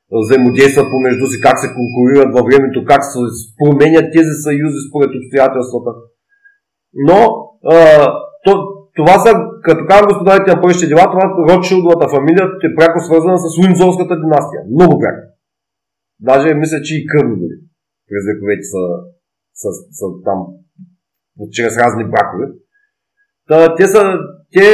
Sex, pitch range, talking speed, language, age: male, 130-185 Hz, 130 wpm, Bulgarian, 30-49